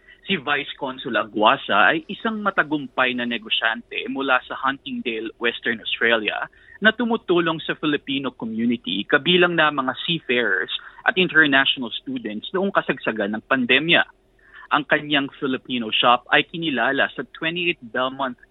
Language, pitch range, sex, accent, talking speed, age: Filipino, 125-180 Hz, male, native, 125 wpm, 20-39